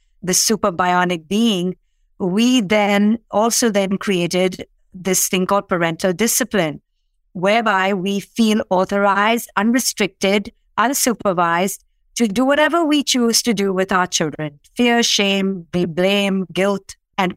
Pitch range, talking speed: 185-235 Hz, 120 wpm